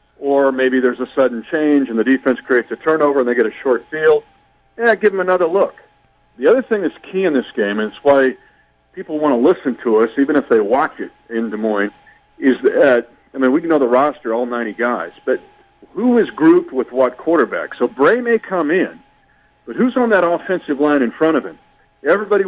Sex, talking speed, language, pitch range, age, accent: male, 220 wpm, English, 130-200 Hz, 50-69, American